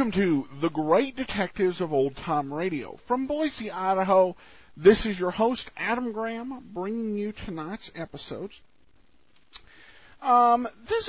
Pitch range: 170-255 Hz